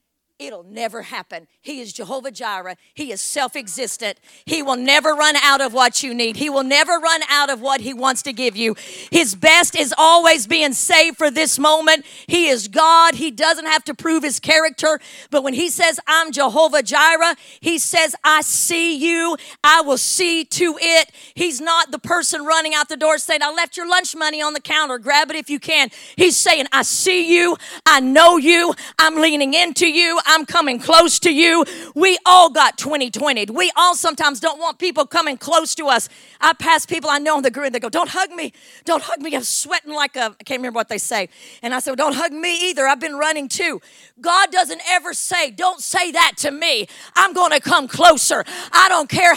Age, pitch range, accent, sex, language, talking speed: 50-69, 280-340 Hz, American, female, English, 215 wpm